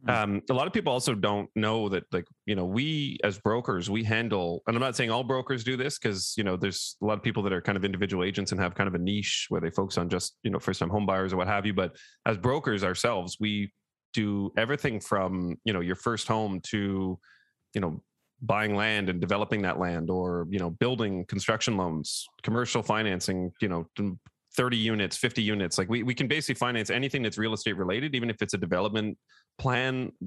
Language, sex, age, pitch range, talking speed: English, male, 30-49, 95-115 Hz, 225 wpm